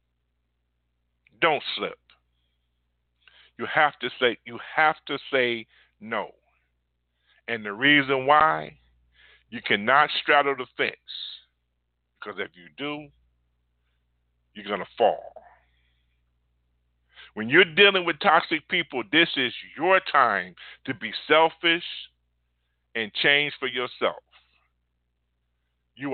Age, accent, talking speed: 50-69, American, 105 wpm